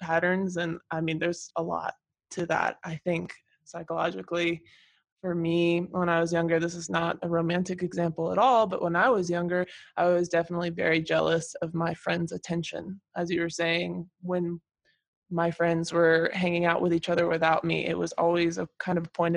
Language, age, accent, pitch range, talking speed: English, 20-39, American, 170-180 Hz, 190 wpm